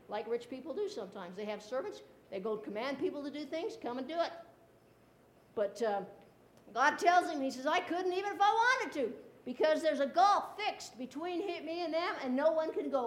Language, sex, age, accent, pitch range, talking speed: English, female, 60-79, American, 255-340 Hz, 215 wpm